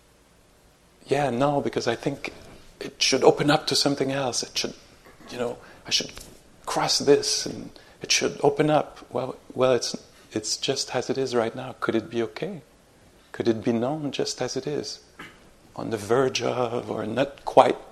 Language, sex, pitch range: English, male, 105-125 Hz